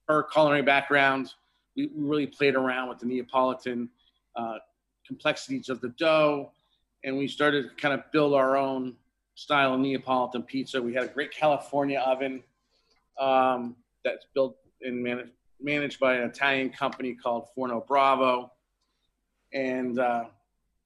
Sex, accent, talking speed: male, American, 135 wpm